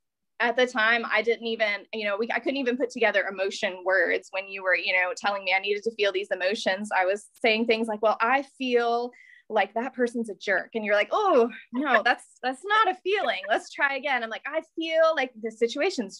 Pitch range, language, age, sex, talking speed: 200-245 Hz, English, 20-39, female, 230 wpm